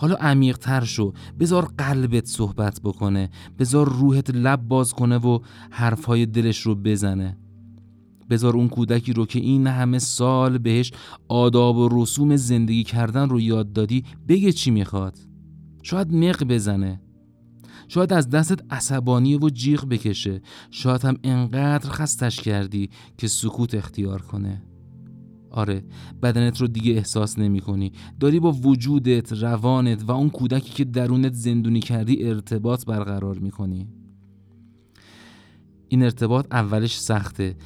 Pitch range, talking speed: 105-130 Hz, 130 wpm